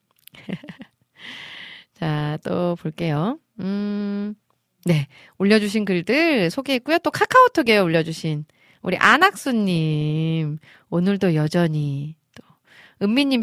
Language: Korean